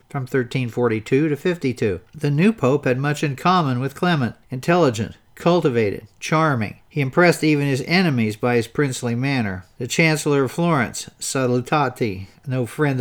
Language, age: English, 50-69